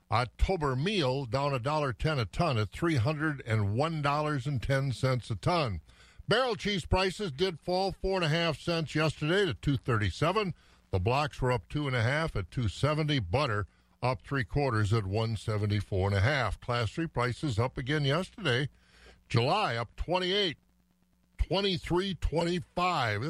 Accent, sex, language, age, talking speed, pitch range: American, male, English, 60-79, 185 wpm, 115-165 Hz